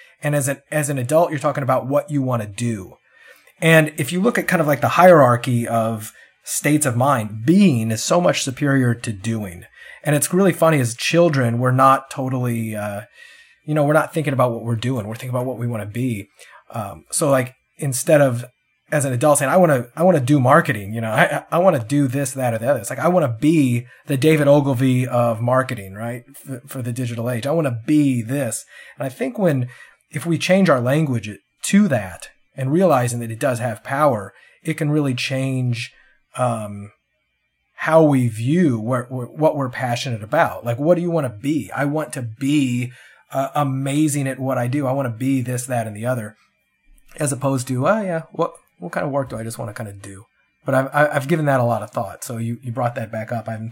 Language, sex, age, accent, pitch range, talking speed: English, male, 30-49, American, 120-150 Hz, 230 wpm